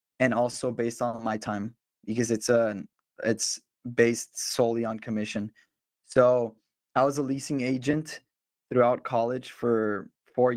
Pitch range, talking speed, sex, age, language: 115-125 Hz, 135 wpm, male, 20-39, English